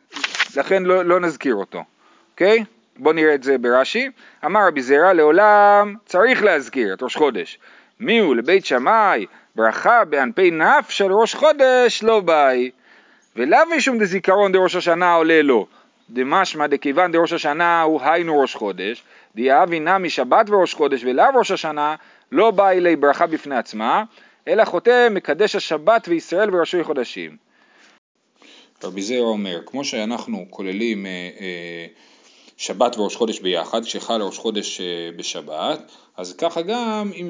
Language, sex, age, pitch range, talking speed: Hebrew, male, 40-59, 130-200 Hz, 140 wpm